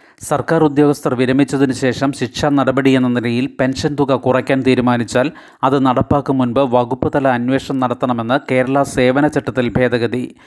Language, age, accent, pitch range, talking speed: Malayalam, 30-49, native, 125-145 Hz, 125 wpm